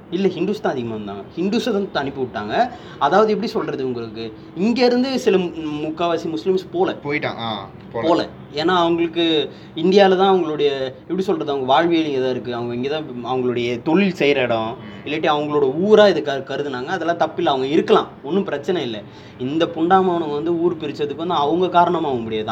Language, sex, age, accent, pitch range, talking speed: Tamil, male, 20-39, native, 120-170 Hz, 155 wpm